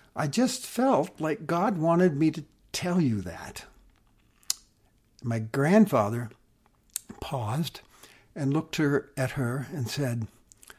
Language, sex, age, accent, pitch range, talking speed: English, male, 60-79, American, 110-150 Hz, 110 wpm